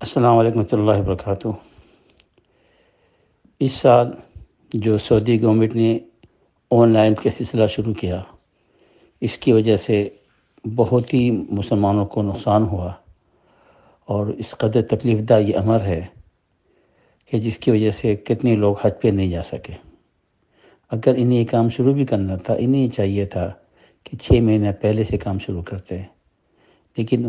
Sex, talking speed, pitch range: male, 145 wpm, 100-115 Hz